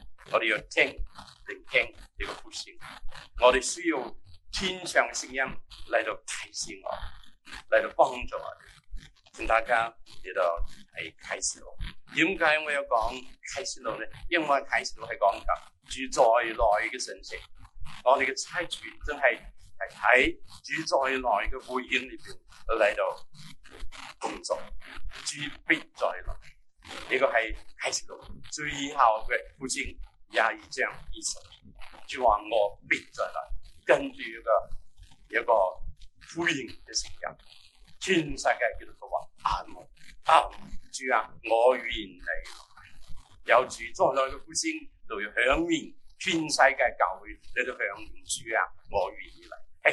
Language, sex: Chinese, male